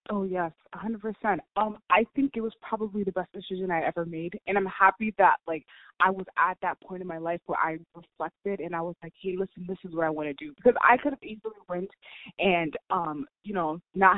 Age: 20-39